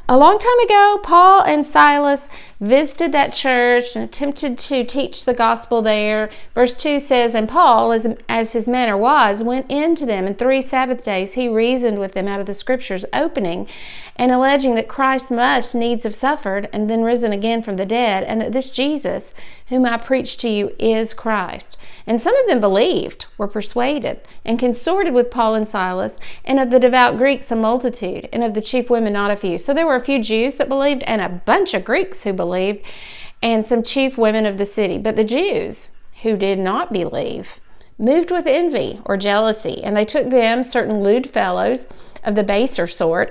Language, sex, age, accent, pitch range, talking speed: English, female, 40-59, American, 210-255 Hz, 195 wpm